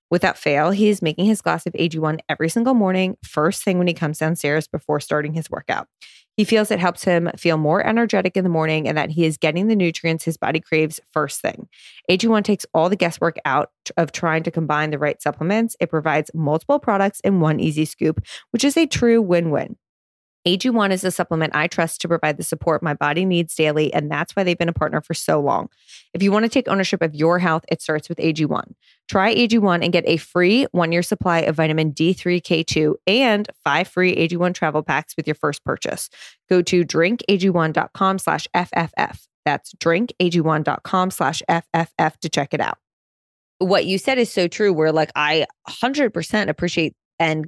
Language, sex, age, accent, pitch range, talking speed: English, female, 20-39, American, 155-190 Hz, 195 wpm